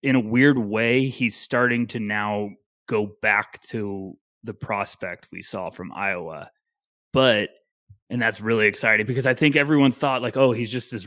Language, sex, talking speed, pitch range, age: English, male, 175 wpm, 110-130 Hz, 20-39